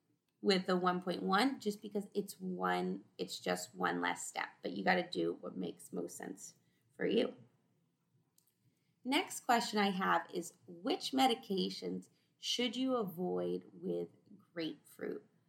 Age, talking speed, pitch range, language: 30-49, 135 wpm, 165-220 Hz, English